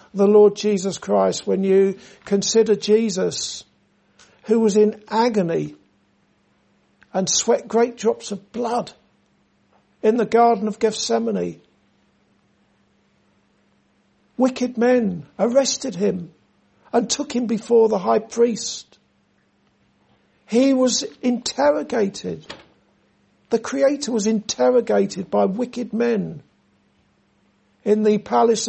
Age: 60-79